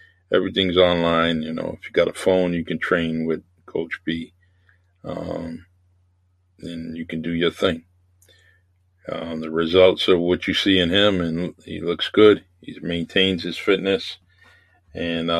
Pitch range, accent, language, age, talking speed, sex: 85-95 Hz, American, English, 40-59, 155 wpm, male